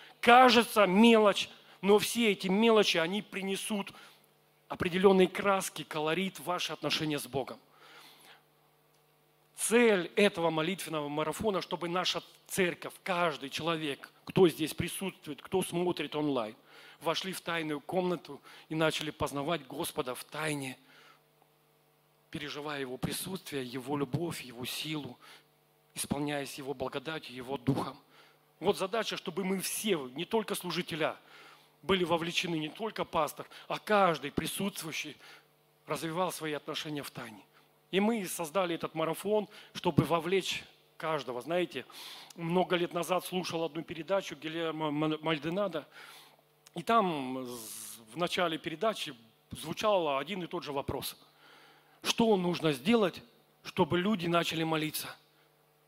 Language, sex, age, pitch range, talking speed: Russian, male, 40-59, 150-190 Hz, 115 wpm